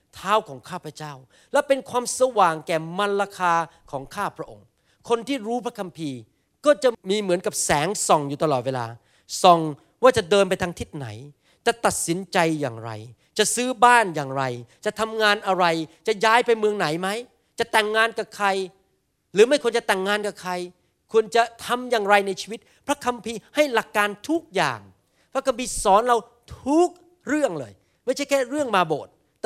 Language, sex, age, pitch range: Thai, male, 40-59, 170-235 Hz